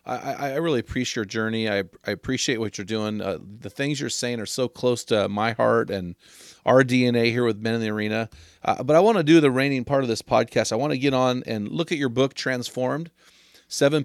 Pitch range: 120-150 Hz